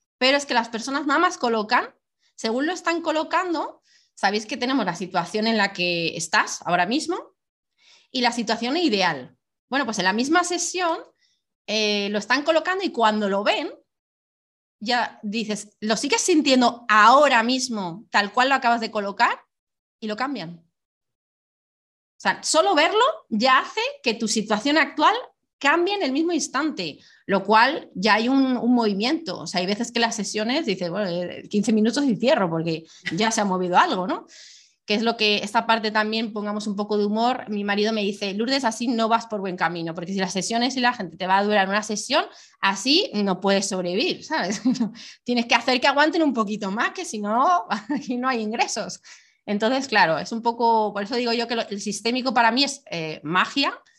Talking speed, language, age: 190 wpm, Spanish, 30-49